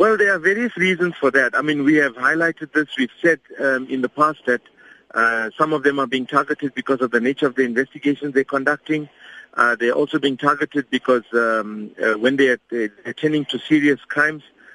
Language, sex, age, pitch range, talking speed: English, male, 50-69, 125-150 Hz, 205 wpm